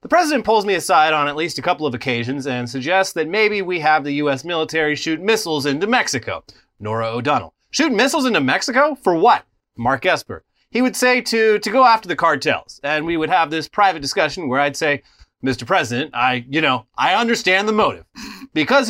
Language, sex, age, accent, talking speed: English, male, 30-49, American, 205 wpm